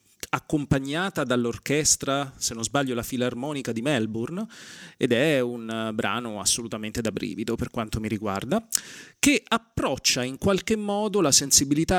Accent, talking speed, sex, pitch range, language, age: native, 135 wpm, male, 115-155 Hz, Italian, 30-49